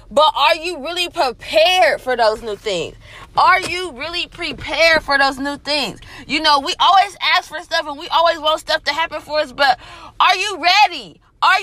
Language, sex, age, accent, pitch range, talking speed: English, female, 20-39, American, 275-345 Hz, 195 wpm